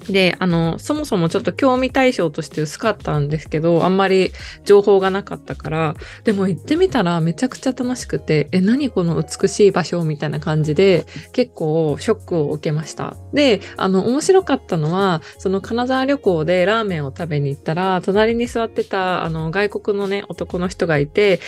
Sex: female